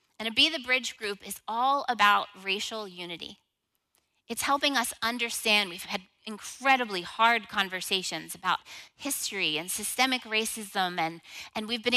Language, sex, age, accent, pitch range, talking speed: English, female, 30-49, American, 190-235 Hz, 145 wpm